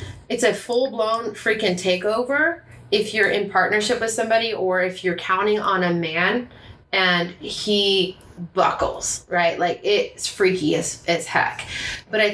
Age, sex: 20-39, female